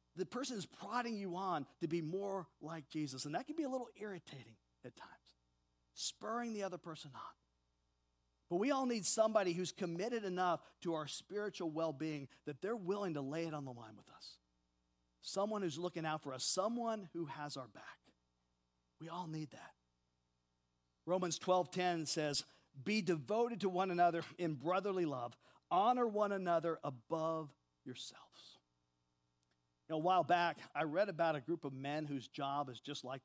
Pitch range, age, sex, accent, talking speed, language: 125-190 Hz, 50-69, male, American, 170 wpm, English